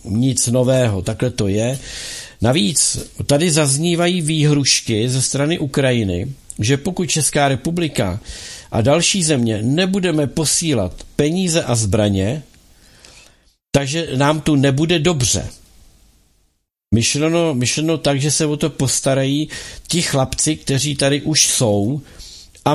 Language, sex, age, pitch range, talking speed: Czech, male, 60-79, 115-160 Hz, 115 wpm